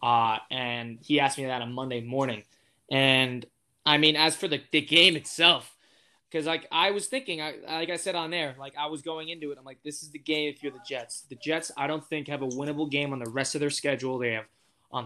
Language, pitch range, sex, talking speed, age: English, 130-155 Hz, male, 250 wpm, 20-39